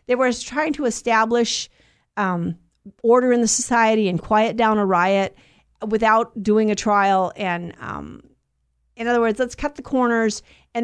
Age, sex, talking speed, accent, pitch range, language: 50-69, female, 160 wpm, American, 210-255 Hz, English